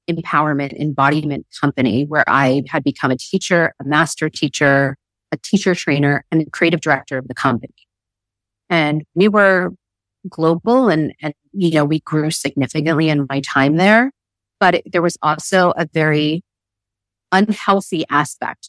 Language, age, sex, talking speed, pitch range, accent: English, 30-49, female, 145 wpm, 135-170 Hz, American